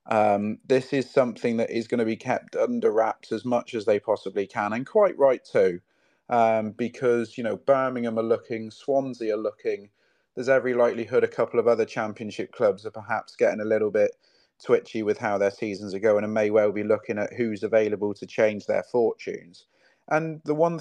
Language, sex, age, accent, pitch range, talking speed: English, male, 30-49, British, 110-130 Hz, 200 wpm